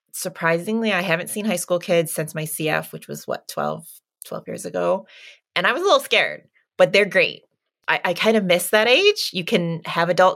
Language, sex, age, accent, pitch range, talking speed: English, female, 20-39, American, 160-210 Hz, 210 wpm